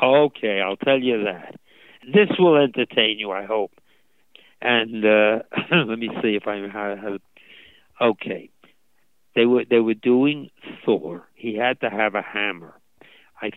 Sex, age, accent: male, 60-79, American